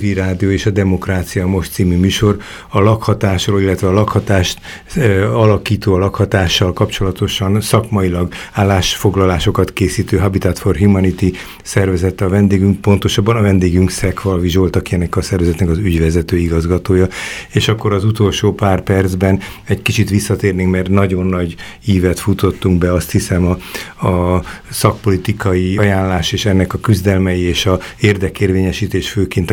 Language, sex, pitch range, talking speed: Hungarian, male, 95-100 Hz, 135 wpm